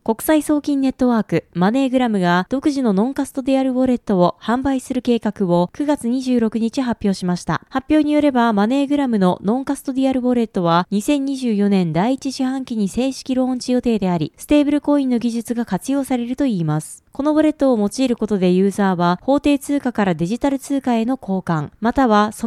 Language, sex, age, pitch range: Japanese, female, 20-39, 205-270 Hz